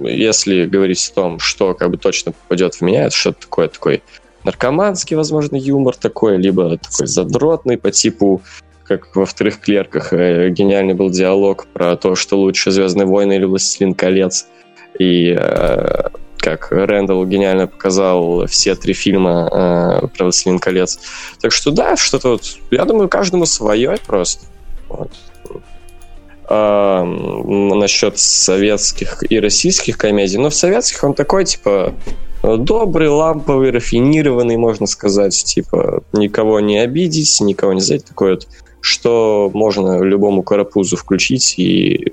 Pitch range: 95-120 Hz